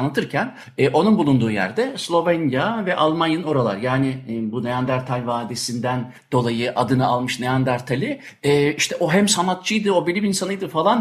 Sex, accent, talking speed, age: male, native, 145 wpm, 50-69